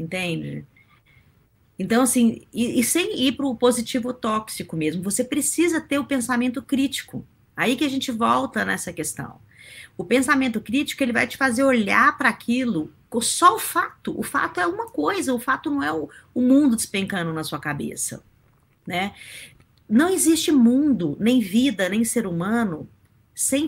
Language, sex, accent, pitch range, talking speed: Portuguese, female, Brazilian, 180-275 Hz, 160 wpm